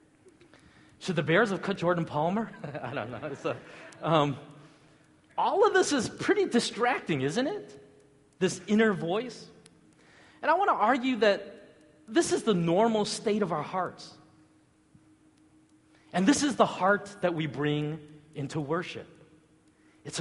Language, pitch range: English, 150-190 Hz